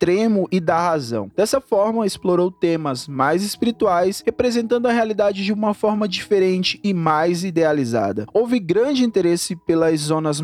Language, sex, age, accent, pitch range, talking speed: Portuguese, male, 20-39, Brazilian, 165-225 Hz, 145 wpm